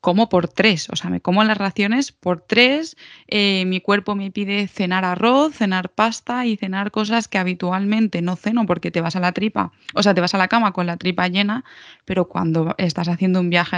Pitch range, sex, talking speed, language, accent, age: 180-220 Hz, female, 220 wpm, Spanish, Spanish, 20-39